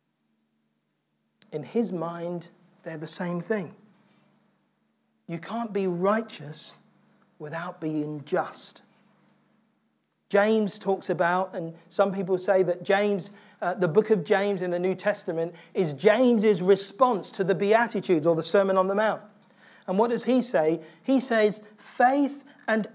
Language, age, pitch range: English, 40-59, 185-245 Hz